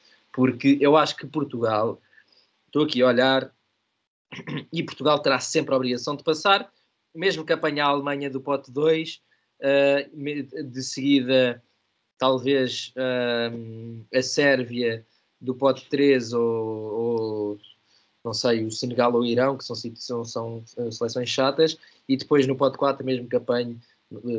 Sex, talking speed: male, 140 wpm